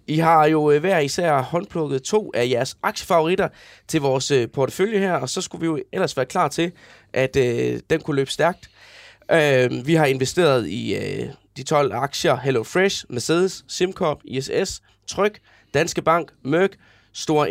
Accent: native